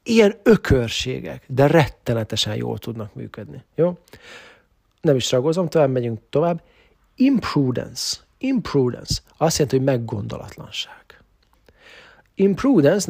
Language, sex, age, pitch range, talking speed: English, male, 40-59, 115-160 Hz, 95 wpm